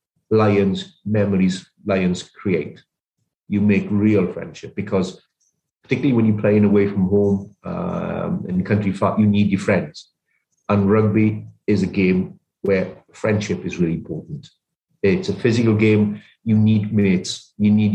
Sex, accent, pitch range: male, British, 95-110 Hz